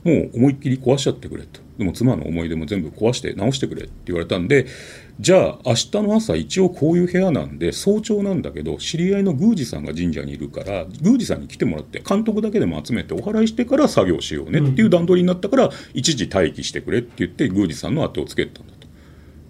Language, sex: Japanese, male